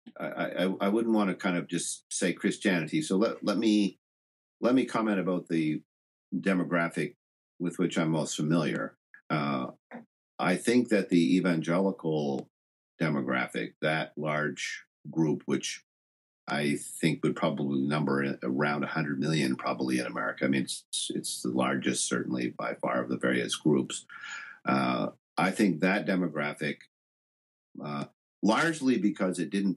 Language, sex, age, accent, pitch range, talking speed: English, male, 50-69, American, 70-85 Hz, 145 wpm